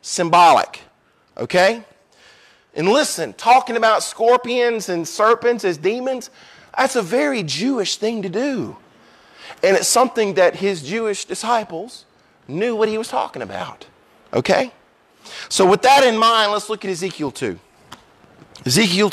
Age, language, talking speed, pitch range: 40-59, English, 135 wpm, 175-230 Hz